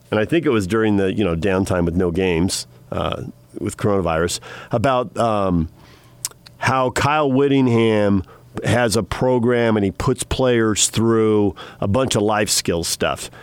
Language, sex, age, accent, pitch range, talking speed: English, male, 40-59, American, 100-125 Hz, 155 wpm